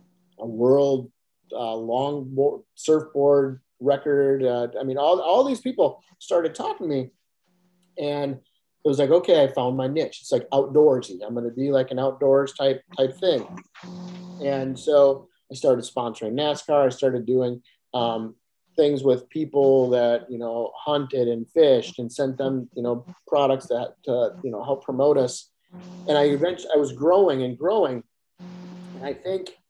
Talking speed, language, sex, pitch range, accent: 165 wpm, English, male, 125-160 Hz, American